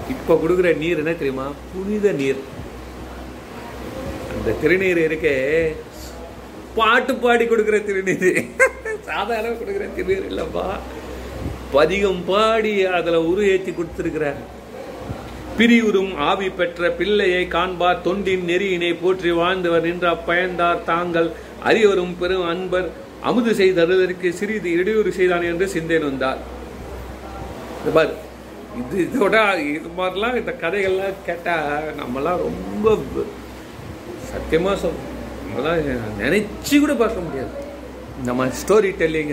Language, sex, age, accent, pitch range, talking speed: Tamil, male, 40-59, native, 145-200 Hz, 85 wpm